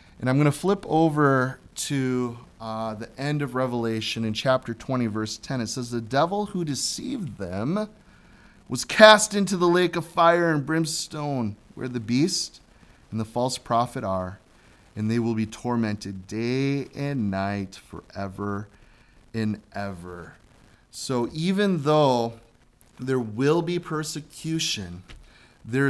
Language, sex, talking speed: English, male, 140 wpm